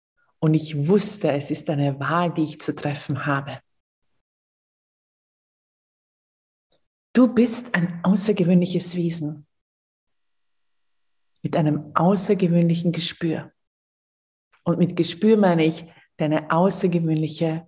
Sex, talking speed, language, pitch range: female, 95 wpm, German, 150-180 Hz